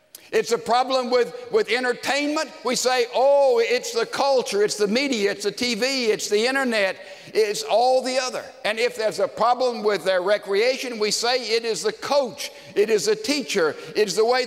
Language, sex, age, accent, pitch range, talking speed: English, male, 60-79, American, 200-265 Hz, 190 wpm